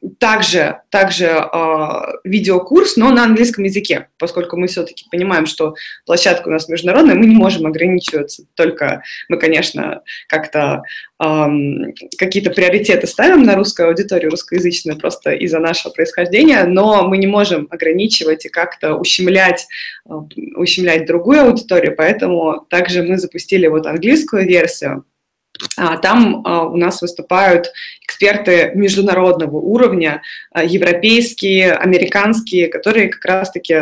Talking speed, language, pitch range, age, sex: 120 wpm, Russian, 165-200 Hz, 20-39, female